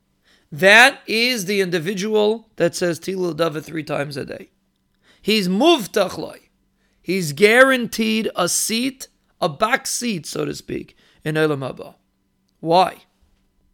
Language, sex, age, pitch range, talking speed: English, male, 40-59, 165-210 Hz, 120 wpm